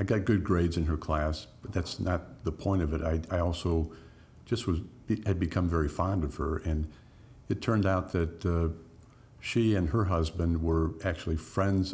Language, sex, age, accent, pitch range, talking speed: English, male, 60-79, American, 85-110 Hz, 190 wpm